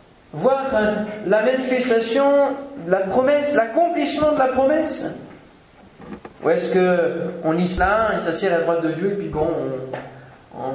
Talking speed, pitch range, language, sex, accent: 145 wpm, 165-250 Hz, French, male, French